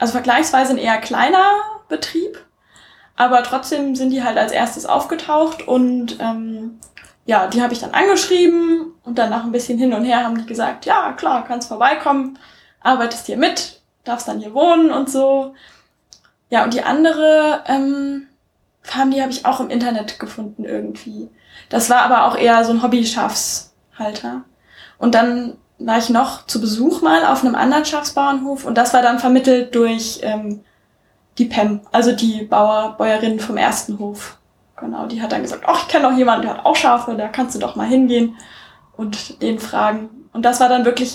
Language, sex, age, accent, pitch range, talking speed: German, female, 10-29, German, 230-275 Hz, 180 wpm